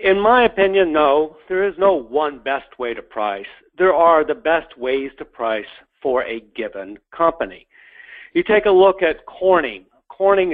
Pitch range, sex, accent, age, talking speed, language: 125-190 Hz, male, American, 50-69, 170 wpm, English